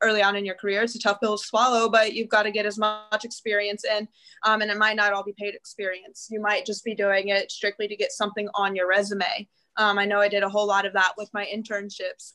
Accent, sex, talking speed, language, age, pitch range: American, female, 265 wpm, English, 20-39, 195-215 Hz